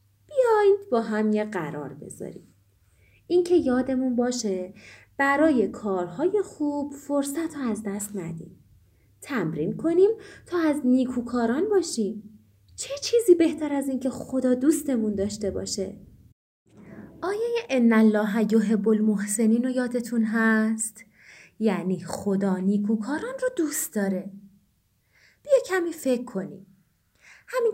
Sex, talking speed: female, 110 wpm